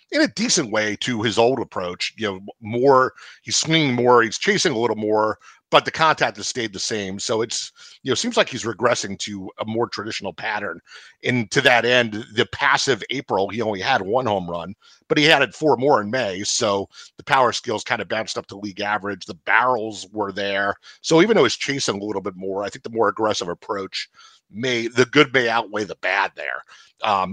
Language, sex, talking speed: English, male, 215 wpm